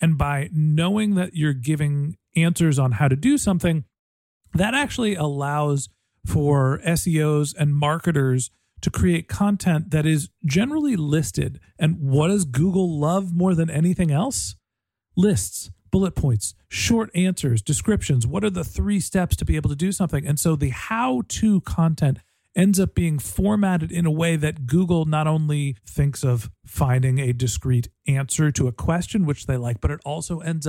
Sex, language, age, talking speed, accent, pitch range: male, English, 40-59, 165 wpm, American, 135-170 Hz